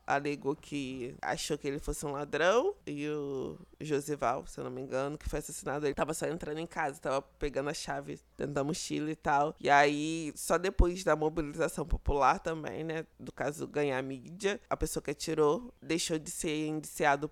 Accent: Brazilian